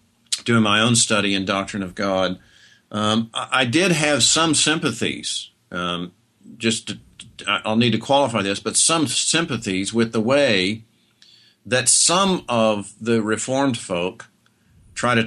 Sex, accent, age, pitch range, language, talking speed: male, American, 50-69, 100-120 Hz, English, 140 wpm